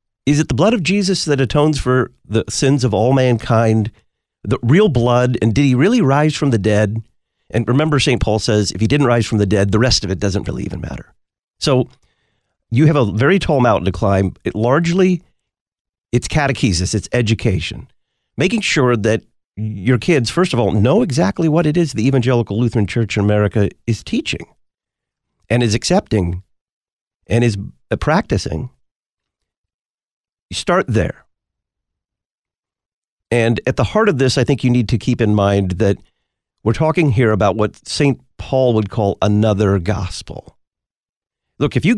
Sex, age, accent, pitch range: male, 50-69, American, 105-130 Hz